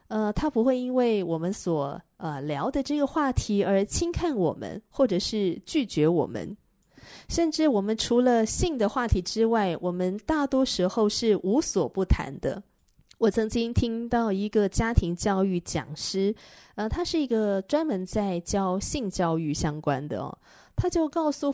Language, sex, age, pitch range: Chinese, female, 30-49, 175-240 Hz